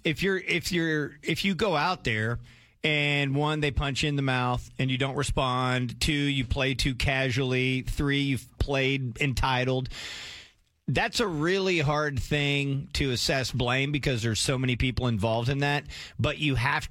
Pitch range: 120-145 Hz